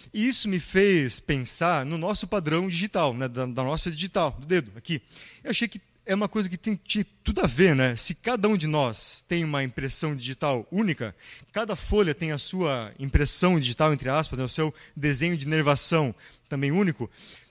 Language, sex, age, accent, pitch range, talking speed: Portuguese, male, 20-39, Brazilian, 140-180 Hz, 195 wpm